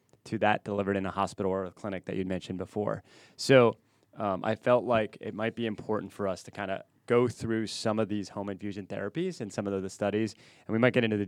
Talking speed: 250 wpm